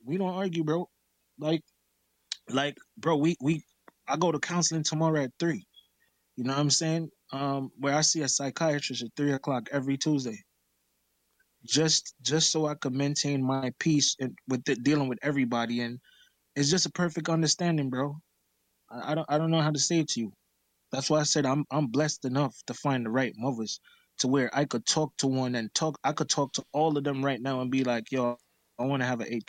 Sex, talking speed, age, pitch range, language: male, 215 wpm, 20-39, 125-155 Hz, English